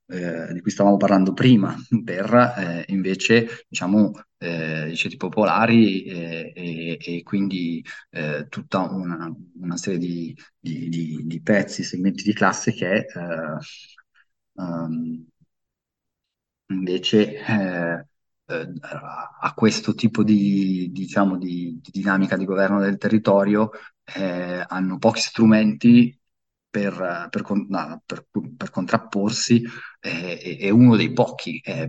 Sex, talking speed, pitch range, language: male, 120 wpm, 90-105 Hz, Italian